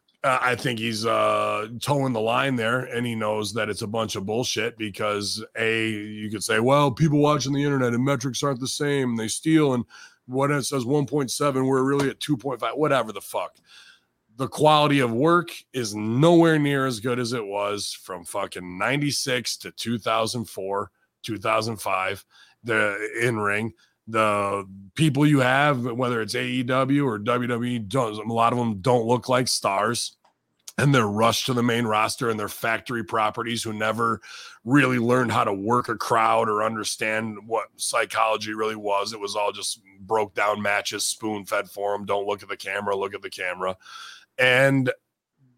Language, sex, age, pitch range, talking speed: English, male, 30-49, 110-140 Hz, 170 wpm